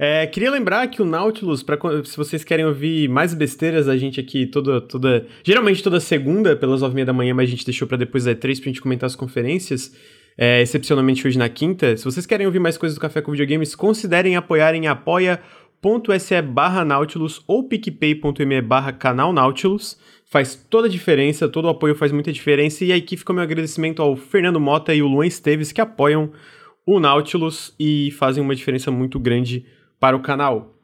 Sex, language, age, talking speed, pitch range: male, Portuguese, 20-39, 200 wpm, 135-175 Hz